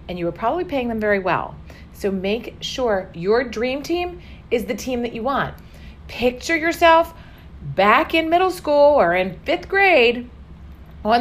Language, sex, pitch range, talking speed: English, female, 180-250 Hz, 165 wpm